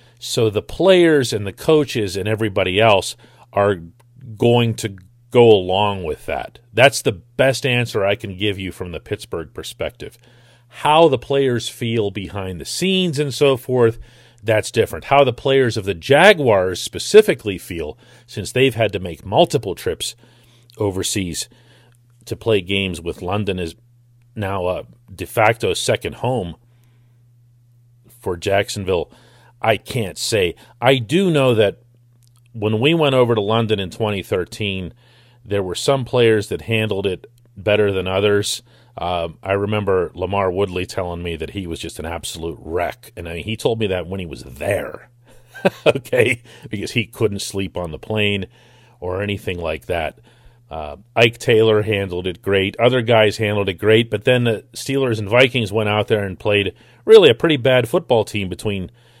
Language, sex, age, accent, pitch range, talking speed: English, male, 40-59, American, 100-120 Hz, 160 wpm